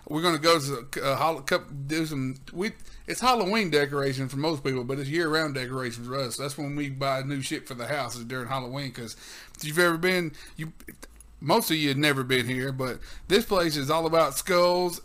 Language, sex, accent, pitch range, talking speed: English, male, American, 140-185 Hz, 215 wpm